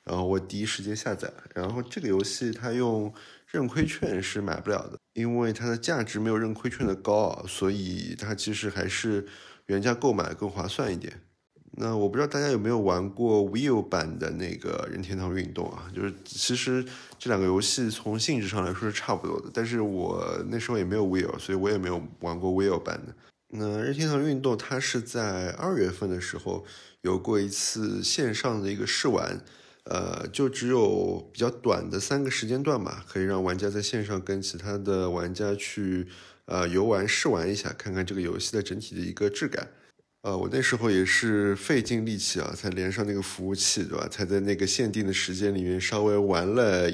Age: 20-39